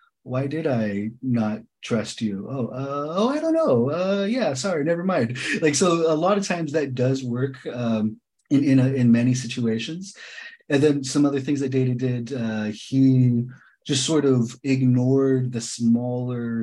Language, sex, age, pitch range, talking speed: English, male, 30-49, 115-135 Hz, 175 wpm